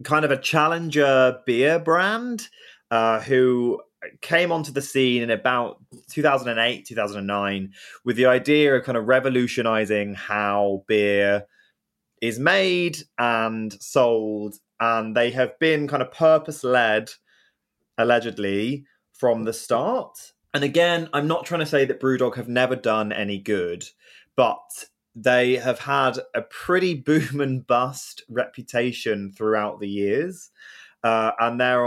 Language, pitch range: English, 110-145 Hz